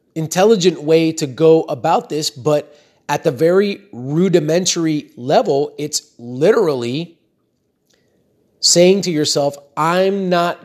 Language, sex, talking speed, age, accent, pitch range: English, male, 105 wpm, 30-49, American, 140-185 Hz